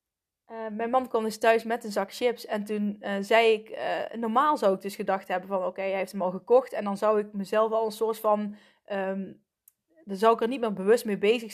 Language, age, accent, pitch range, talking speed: Dutch, 20-39, Dutch, 200-240 Hz, 245 wpm